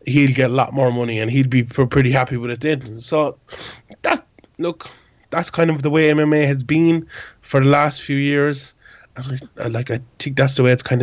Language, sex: English, male